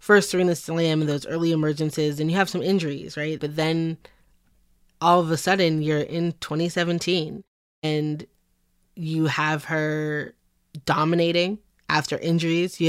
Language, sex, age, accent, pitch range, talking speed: English, female, 20-39, American, 150-170 Hz, 140 wpm